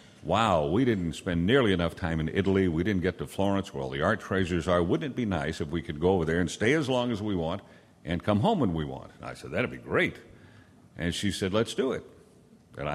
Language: English